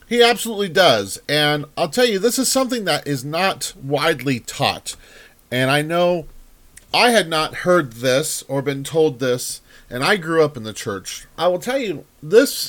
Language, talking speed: English, 185 wpm